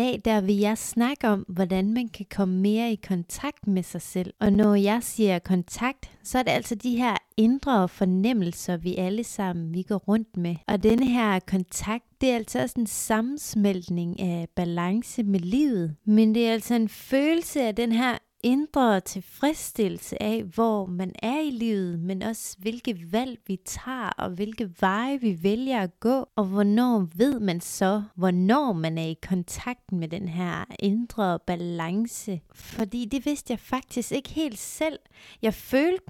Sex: female